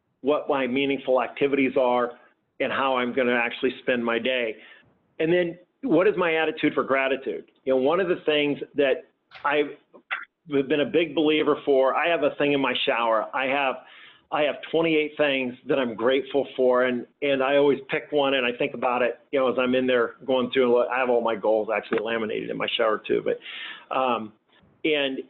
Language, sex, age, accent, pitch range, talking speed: English, male, 40-59, American, 130-155 Hz, 200 wpm